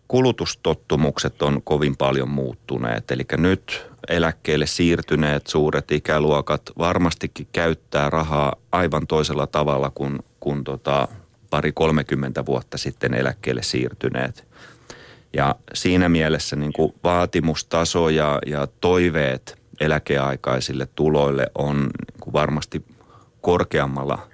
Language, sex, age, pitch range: Finnish, male, 30-49, 70-100 Hz